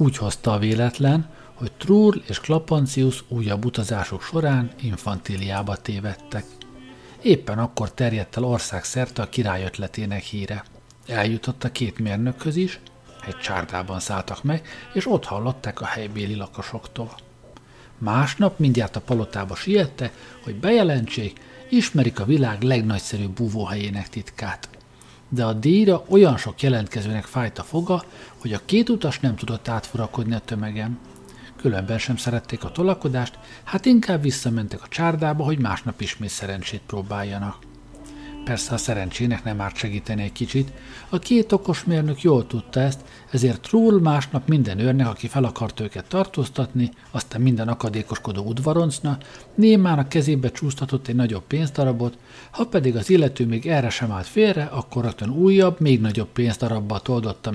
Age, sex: 50-69, male